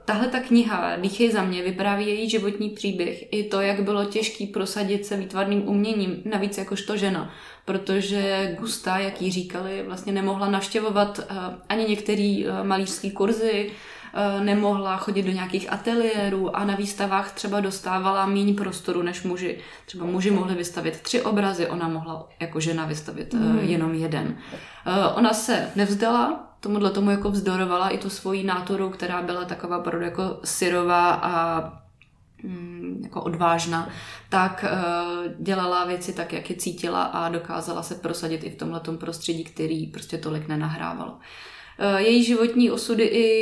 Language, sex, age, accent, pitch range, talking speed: Czech, female, 20-39, native, 180-210 Hz, 145 wpm